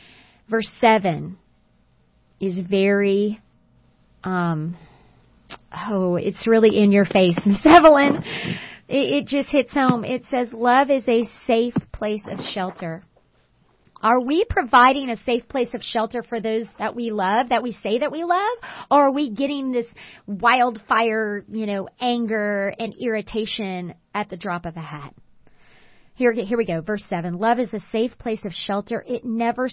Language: English